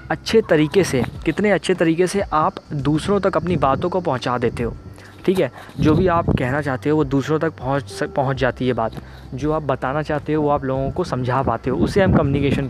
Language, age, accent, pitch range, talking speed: Hindi, 20-39, native, 135-180 Hz, 225 wpm